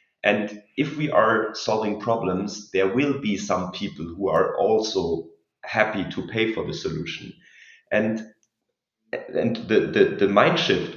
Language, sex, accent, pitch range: English, male, German, 100-140 Hz